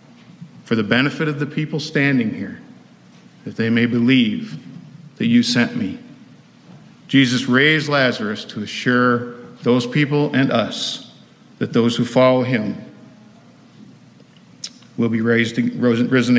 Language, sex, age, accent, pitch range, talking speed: English, male, 50-69, American, 120-145 Hz, 125 wpm